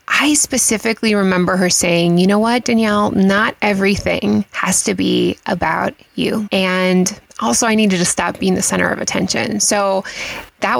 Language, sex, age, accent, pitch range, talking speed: English, female, 20-39, American, 185-225 Hz, 160 wpm